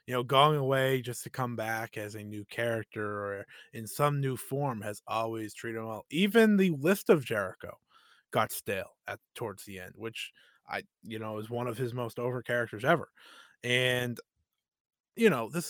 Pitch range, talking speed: 110-140 Hz, 185 wpm